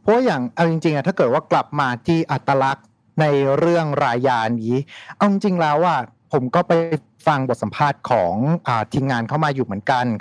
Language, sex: Thai, male